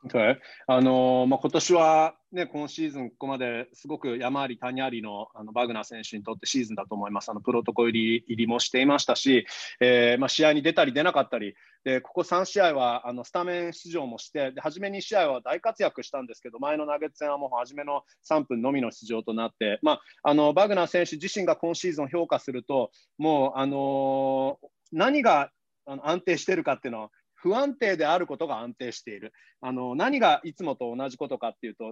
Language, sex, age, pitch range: Japanese, male, 30-49, 125-195 Hz